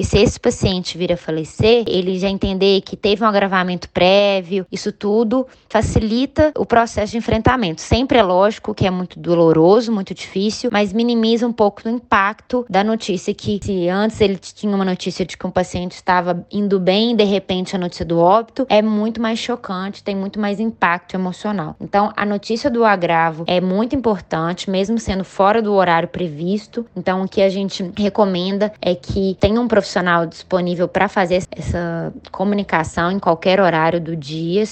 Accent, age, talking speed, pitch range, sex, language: Brazilian, 20-39, 175 wpm, 180-215 Hz, female, Portuguese